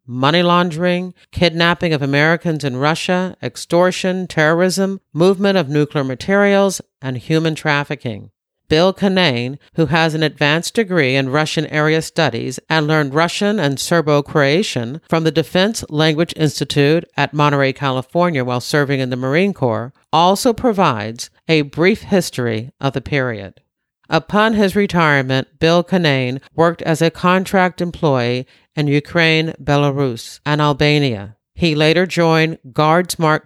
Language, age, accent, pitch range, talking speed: English, 50-69, American, 140-175 Hz, 130 wpm